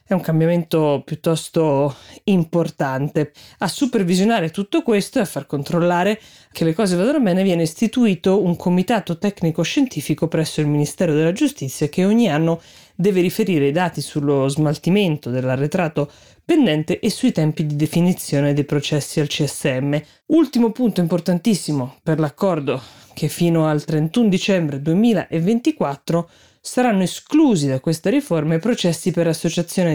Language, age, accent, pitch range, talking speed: Italian, 20-39, native, 145-185 Hz, 135 wpm